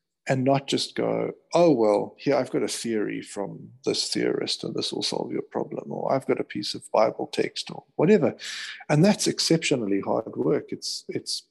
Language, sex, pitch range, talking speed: English, male, 105-130 Hz, 195 wpm